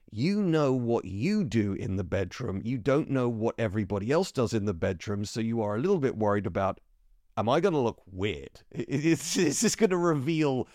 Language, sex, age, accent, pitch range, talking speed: English, male, 40-59, British, 105-150 Hz, 200 wpm